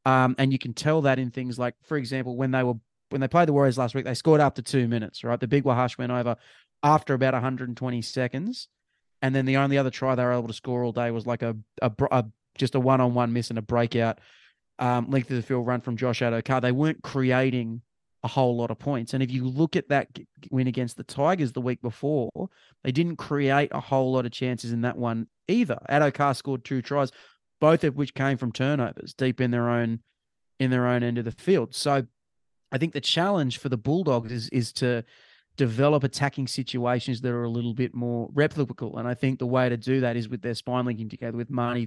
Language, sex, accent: English, male, Australian